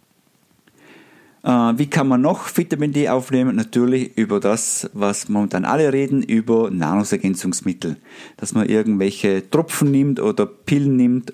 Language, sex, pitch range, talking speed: German, male, 105-150 Hz, 125 wpm